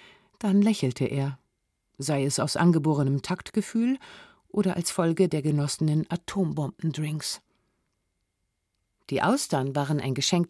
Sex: female